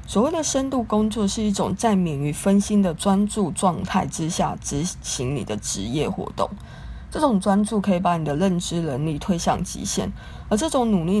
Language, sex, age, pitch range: Chinese, female, 20-39, 170-210 Hz